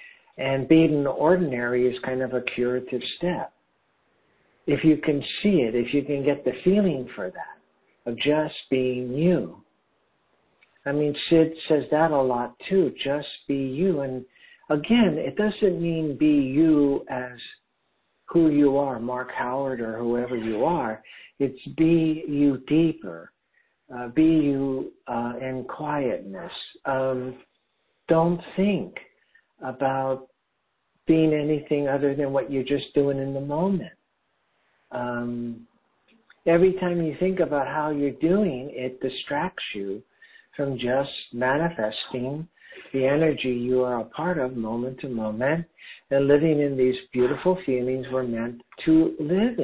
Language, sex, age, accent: English, male, 60-79, American